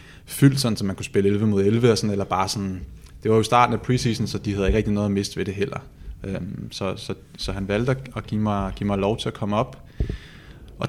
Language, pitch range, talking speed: Danish, 100-130 Hz, 255 wpm